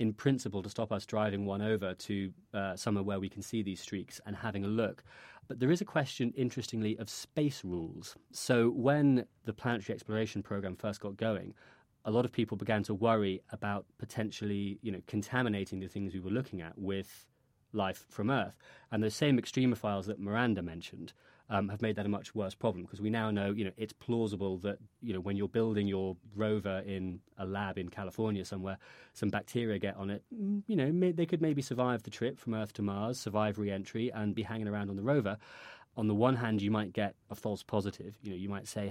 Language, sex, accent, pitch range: English, male, British, 100-115 Hz